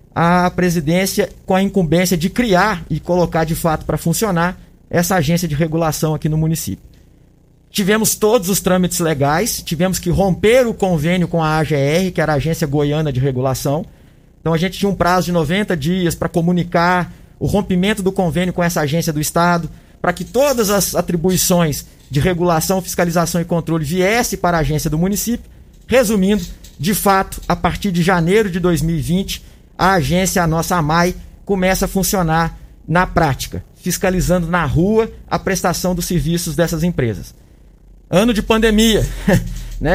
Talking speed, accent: 160 wpm, Brazilian